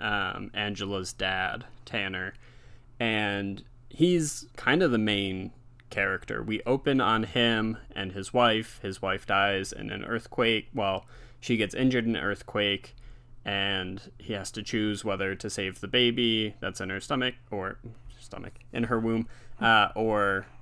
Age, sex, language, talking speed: 20-39, male, English, 150 wpm